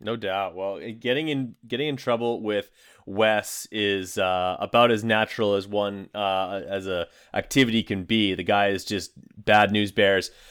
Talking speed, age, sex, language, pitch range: 170 wpm, 30-49, male, English, 105-120 Hz